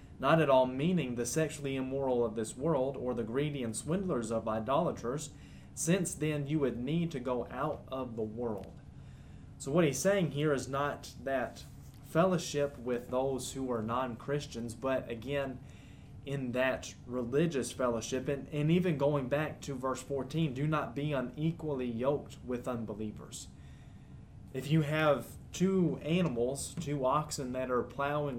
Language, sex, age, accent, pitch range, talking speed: English, male, 20-39, American, 120-150 Hz, 155 wpm